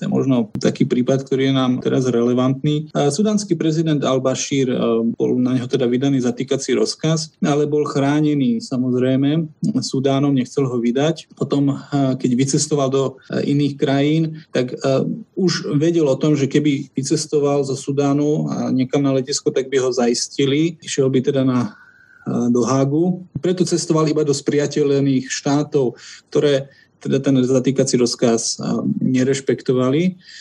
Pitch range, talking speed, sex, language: 130-155 Hz, 140 wpm, male, Slovak